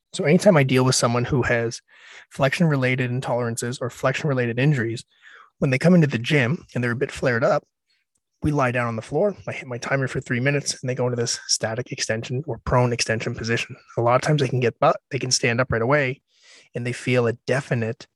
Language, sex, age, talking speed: English, male, 30-49, 225 wpm